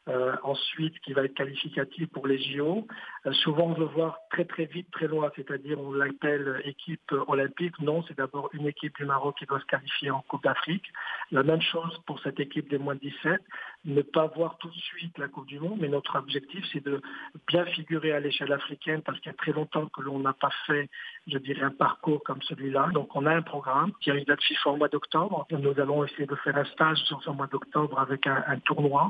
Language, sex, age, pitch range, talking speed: Arabic, male, 50-69, 135-155 Hz, 235 wpm